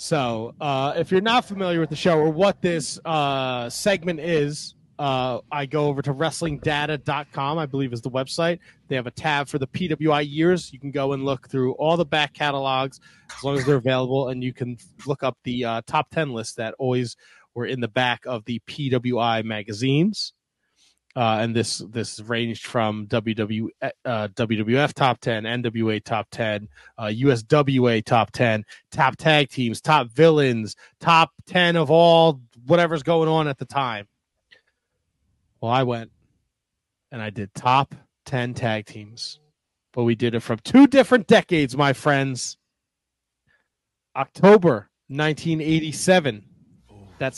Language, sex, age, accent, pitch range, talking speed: English, male, 30-49, American, 115-155 Hz, 155 wpm